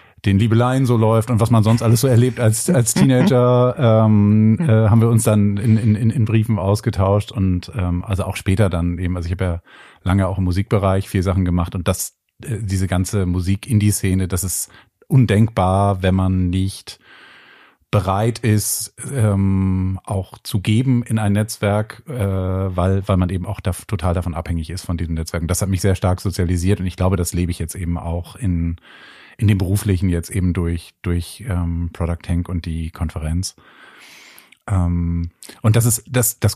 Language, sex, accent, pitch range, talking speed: German, male, German, 90-110 Hz, 190 wpm